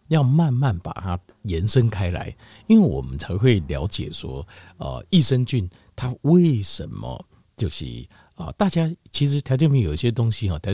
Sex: male